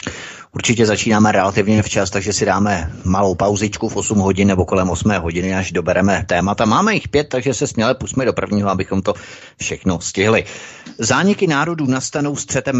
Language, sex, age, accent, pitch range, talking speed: Czech, male, 30-49, native, 100-125 Hz, 170 wpm